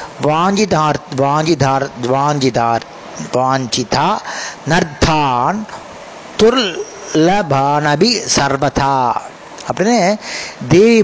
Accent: native